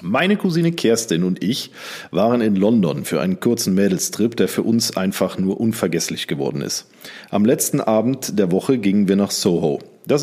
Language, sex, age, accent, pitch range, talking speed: German, male, 40-59, German, 100-145 Hz, 175 wpm